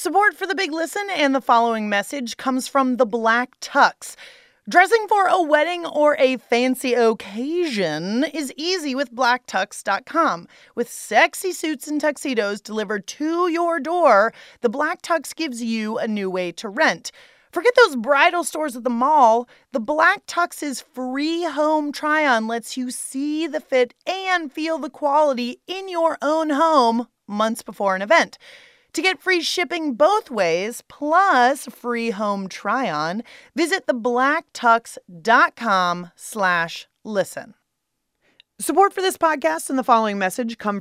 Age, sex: 30-49, female